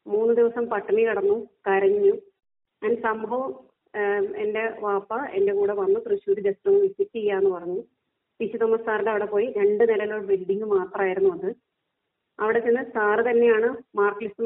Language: Malayalam